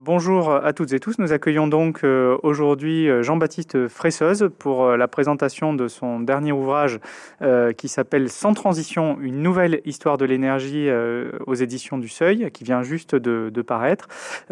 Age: 30-49